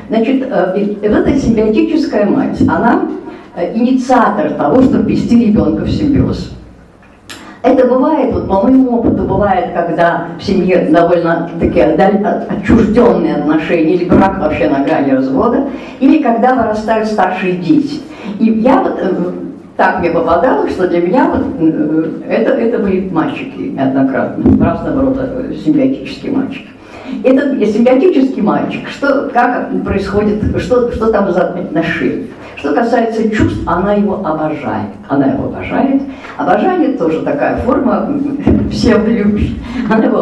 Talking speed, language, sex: 125 wpm, Russian, female